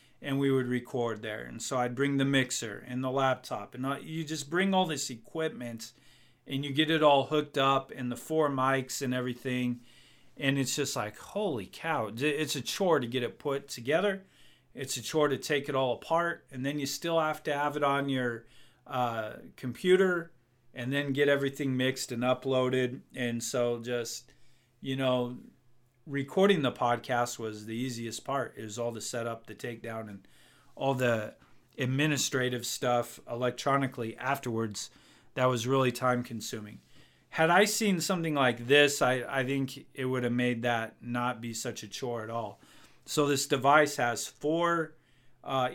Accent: American